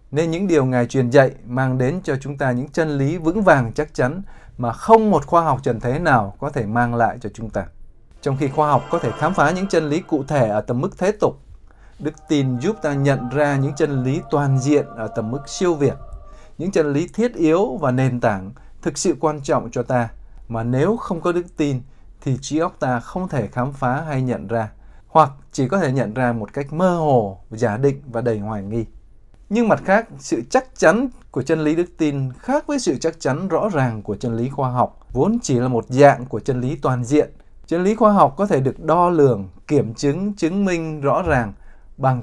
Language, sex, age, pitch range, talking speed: Vietnamese, male, 20-39, 120-170 Hz, 230 wpm